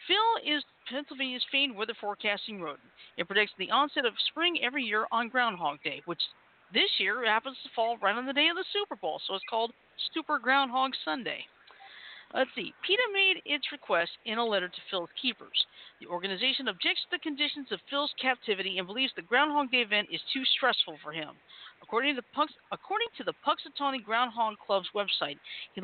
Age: 50-69